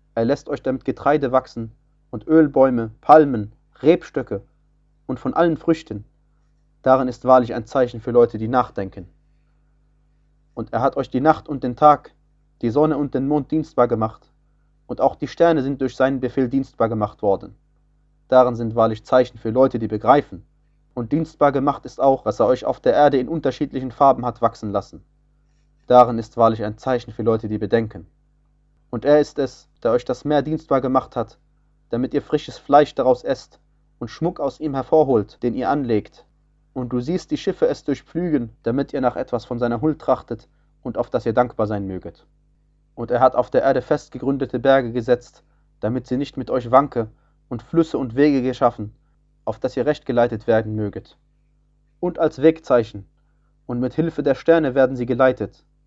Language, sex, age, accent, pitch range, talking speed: German, male, 30-49, German, 115-145 Hz, 180 wpm